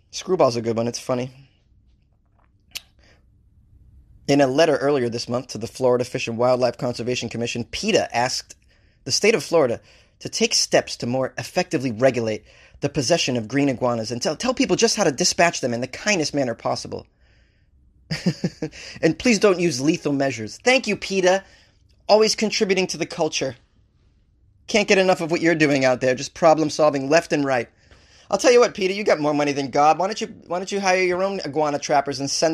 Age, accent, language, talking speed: 20-39, American, English, 195 wpm